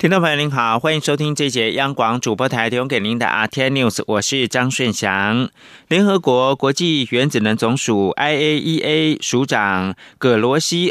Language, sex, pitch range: Chinese, male, 115-165 Hz